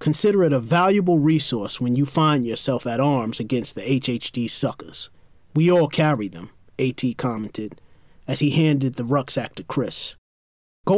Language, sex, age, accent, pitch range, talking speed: English, male, 30-49, American, 120-155 Hz, 160 wpm